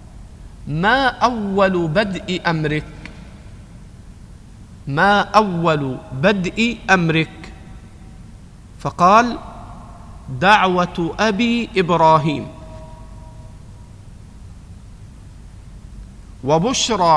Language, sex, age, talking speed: Arabic, male, 50-69, 45 wpm